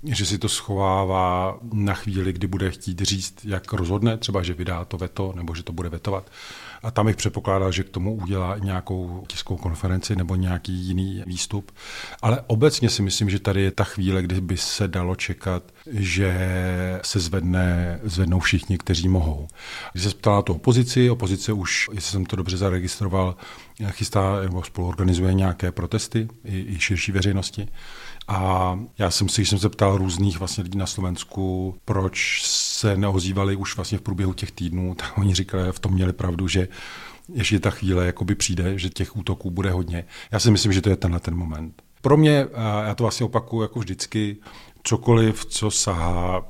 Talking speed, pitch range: 180 wpm, 90-105 Hz